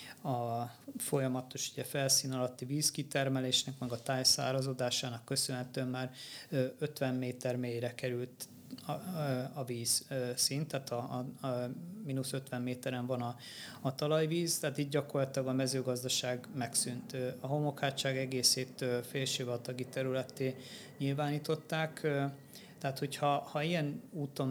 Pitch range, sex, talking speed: 125-145 Hz, male, 120 wpm